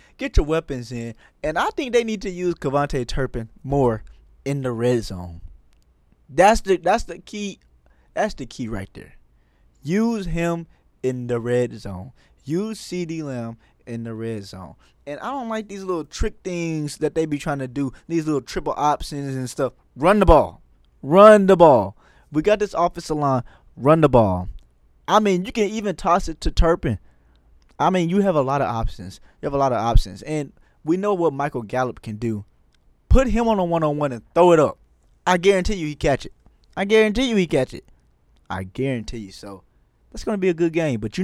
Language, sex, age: English, male, 20-39